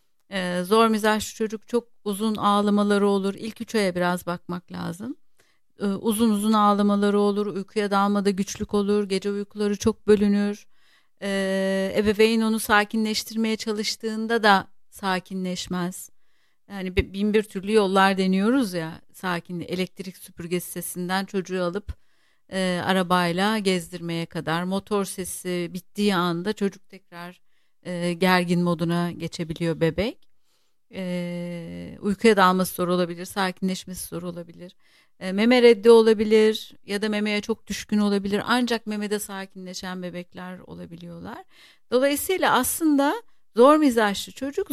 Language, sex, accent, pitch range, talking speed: Turkish, female, native, 180-220 Hz, 120 wpm